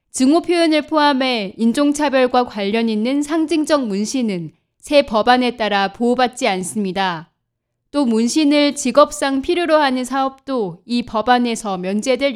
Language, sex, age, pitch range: Korean, female, 20-39, 210-280 Hz